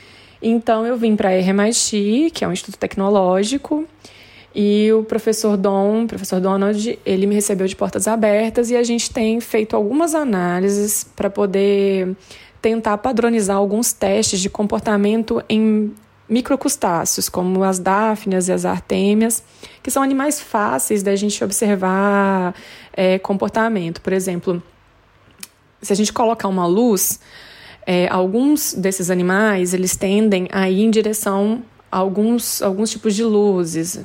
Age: 20-39